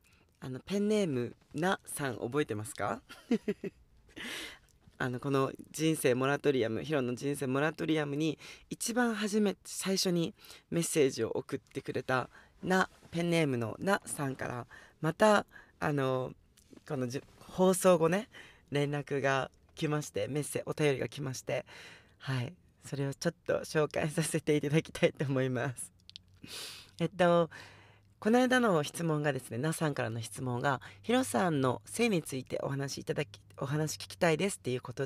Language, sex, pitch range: Japanese, female, 120-165 Hz